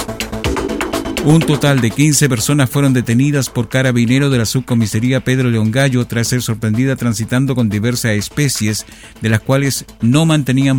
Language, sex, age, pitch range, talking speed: Spanish, male, 50-69, 110-130 Hz, 150 wpm